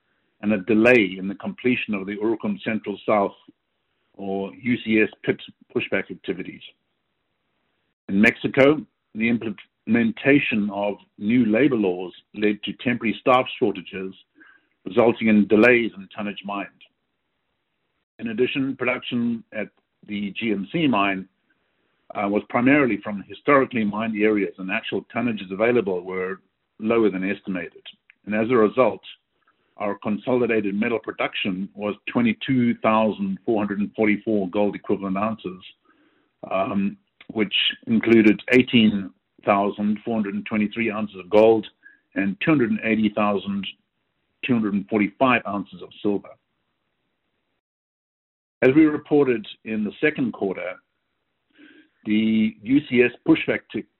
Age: 50-69